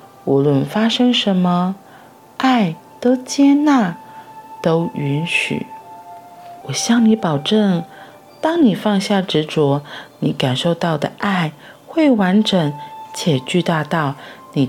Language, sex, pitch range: Chinese, female, 145-235 Hz